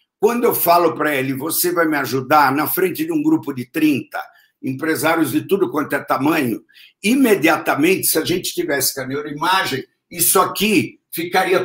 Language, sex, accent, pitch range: Portuguese, male, Brazilian, 165-270 Hz